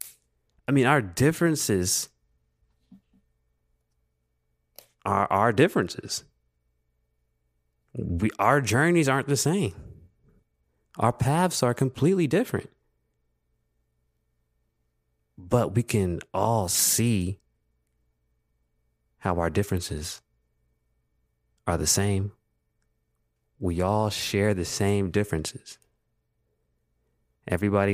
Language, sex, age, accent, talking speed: English, male, 30-49, American, 75 wpm